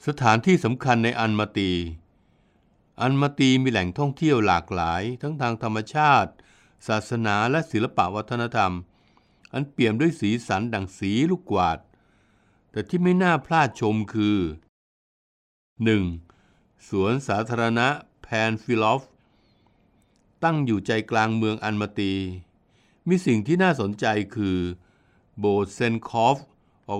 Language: Thai